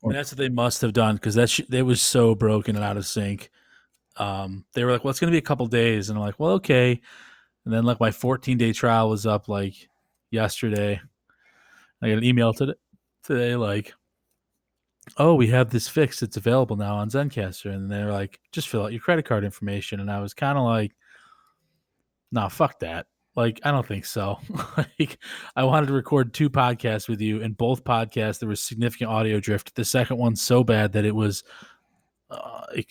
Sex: male